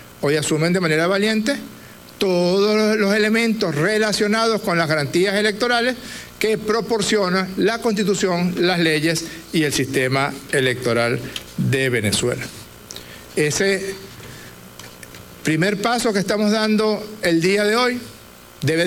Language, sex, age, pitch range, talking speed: Spanish, male, 60-79, 140-200 Hz, 115 wpm